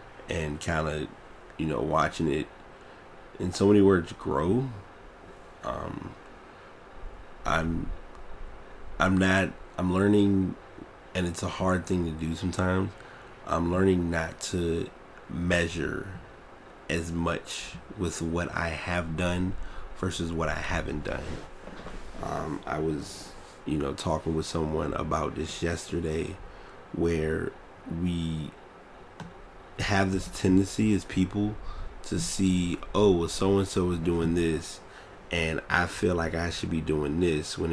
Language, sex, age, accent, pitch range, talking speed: English, male, 30-49, American, 80-95 Hz, 130 wpm